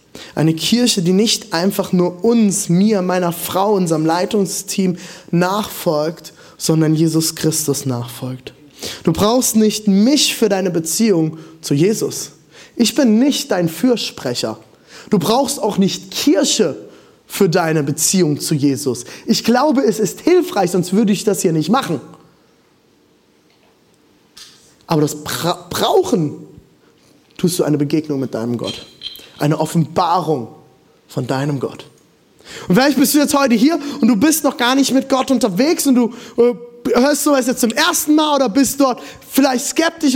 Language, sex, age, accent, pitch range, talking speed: German, male, 20-39, German, 160-245 Hz, 145 wpm